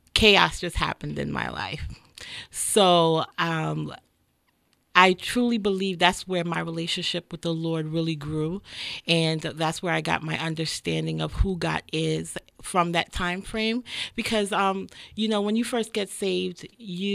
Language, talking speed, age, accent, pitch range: English, 155 wpm, 40-59, American, 165-200 Hz